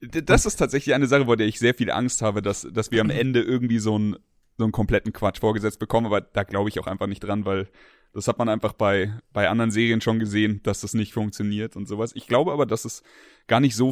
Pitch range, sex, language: 105-120 Hz, male, German